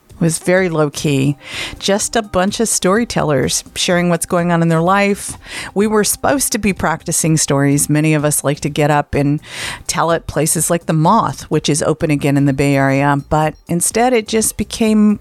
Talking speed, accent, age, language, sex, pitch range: 195 wpm, American, 50-69, English, female, 155-195 Hz